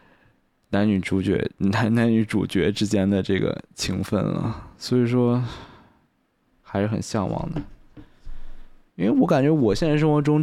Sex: male